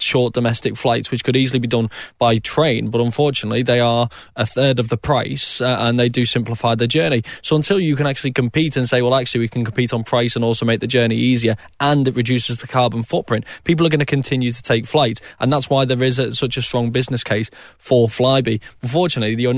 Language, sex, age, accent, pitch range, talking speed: English, male, 10-29, British, 120-135 Hz, 235 wpm